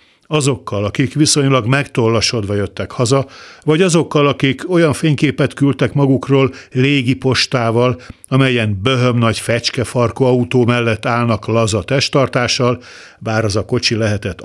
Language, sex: Hungarian, male